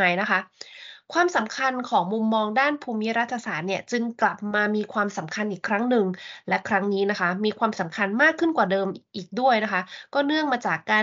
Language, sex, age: Thai, female, 20-39